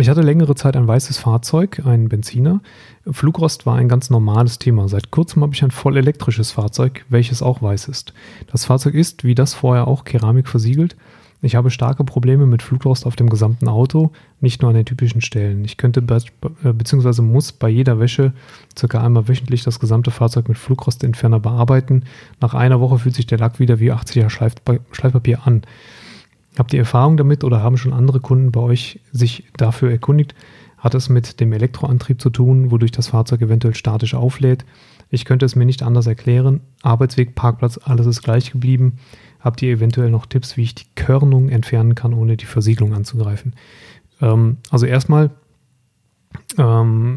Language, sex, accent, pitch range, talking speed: German, male, German, 115-130 Hz, 180 wpm